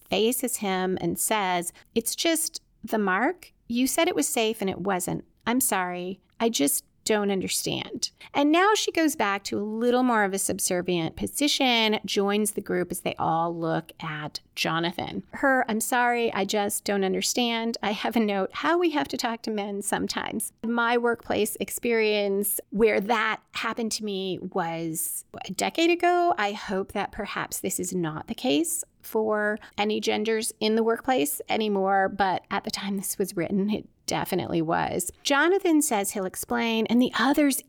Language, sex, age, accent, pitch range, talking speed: English, female, 30-49, American, 190-250 Hz, 170 wpm